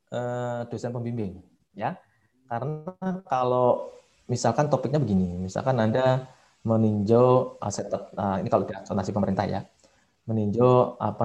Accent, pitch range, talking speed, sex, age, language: native, 105-145 Hz, 110 wpm, male, 20-39, Indonesian